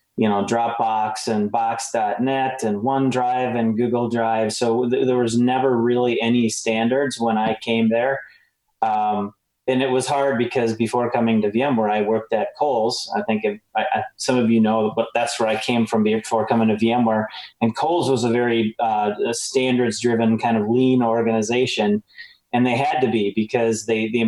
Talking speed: 185 wpm